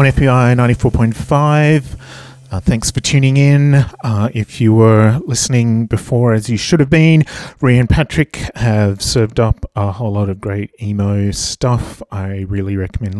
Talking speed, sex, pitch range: 160 wpm, male, 95-120 Hz